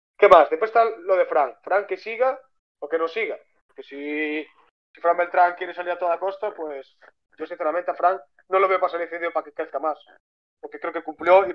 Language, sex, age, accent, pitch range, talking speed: Spanish, male, 20-39, Spanish, 150-195 Hz, 235 wpm